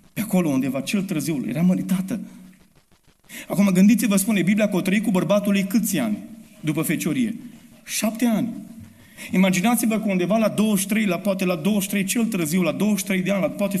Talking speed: 170 wpm